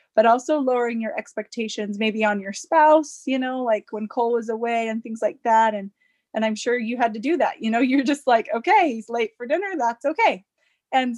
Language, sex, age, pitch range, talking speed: English, female, 20-39, 215-255 Hz, 225 wpm